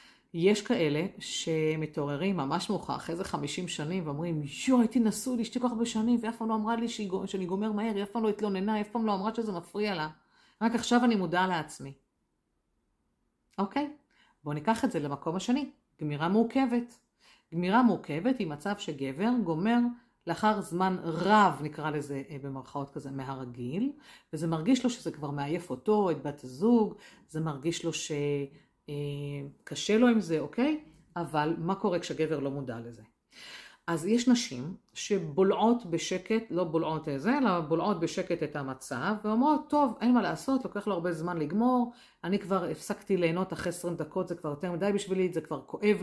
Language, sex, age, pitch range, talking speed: Hebrew, female, 50-69, 155-220 Hz, 170 wpm